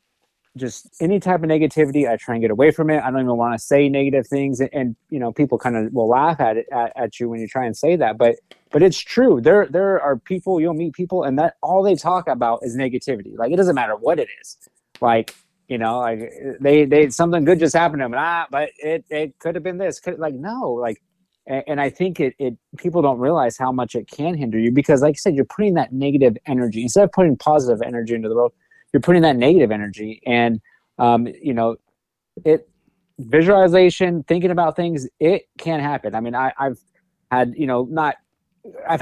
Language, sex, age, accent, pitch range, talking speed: English, male, 20-39, American, 120-165 Hz, 230 wpm